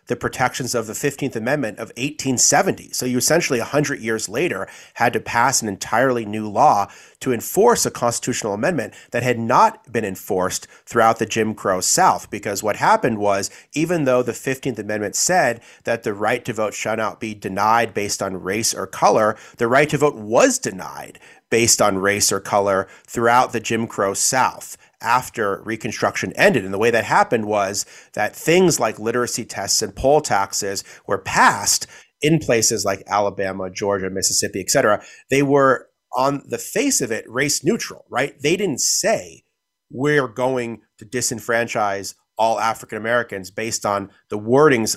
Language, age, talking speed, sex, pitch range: English, 30-49, 170 wpm, male, 100-125 Hz